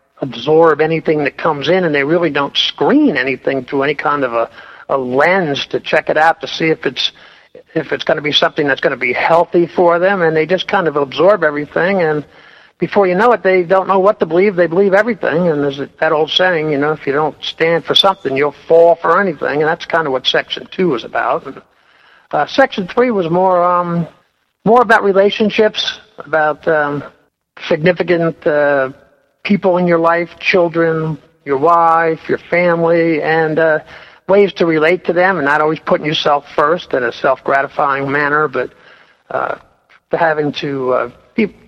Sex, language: male, English